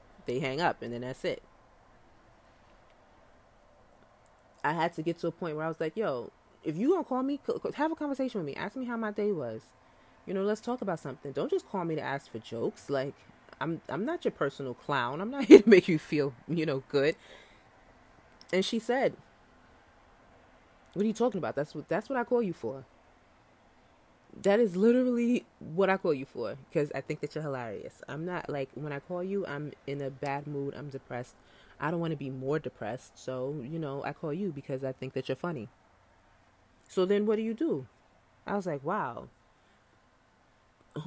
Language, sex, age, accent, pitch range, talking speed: English, female, 20-39, American, 135-200 Hz, 205 wpm